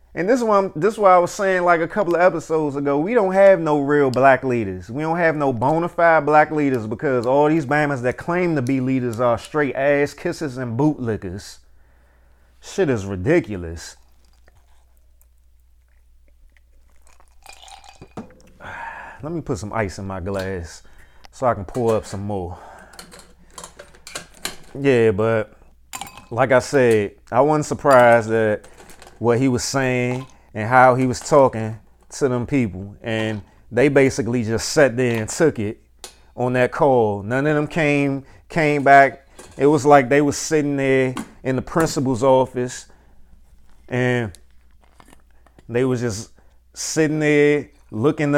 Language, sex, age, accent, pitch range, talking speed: English, male, 30-49, American, 100-145 Hz, 150 wpm